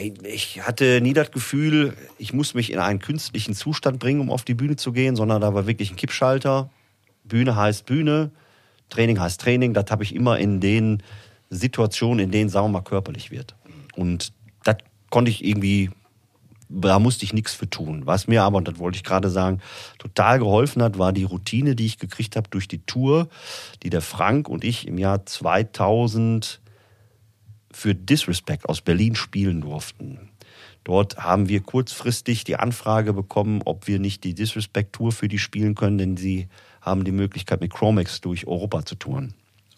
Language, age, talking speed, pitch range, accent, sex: German, 40-59, 180 wpm, 95-120 Hz, German, male